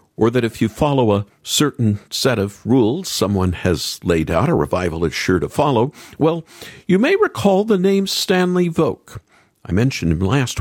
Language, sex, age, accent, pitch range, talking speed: English, male, 50-69, American, 110-175 Hz, 180 wpm